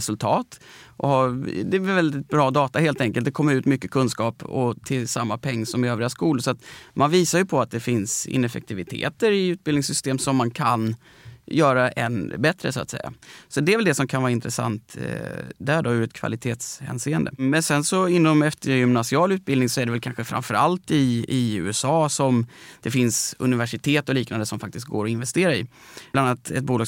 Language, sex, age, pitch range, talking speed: Swedish, male, 30-49, 120-150 Hz, 195 wpm